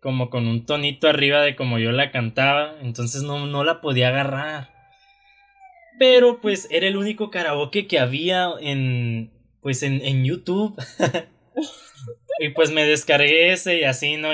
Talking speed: 155 wpm